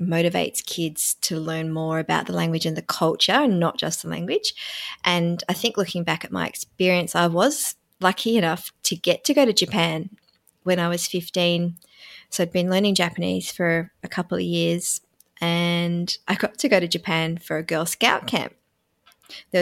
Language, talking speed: English, 185 wpm